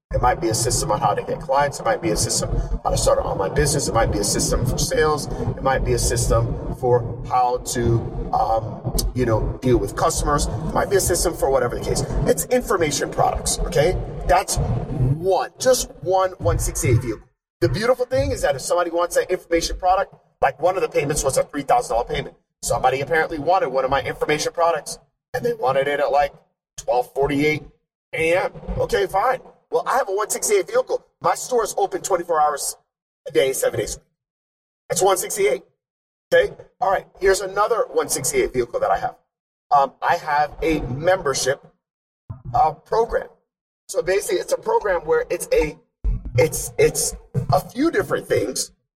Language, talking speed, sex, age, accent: English, 180 wpm, male, 30-49, American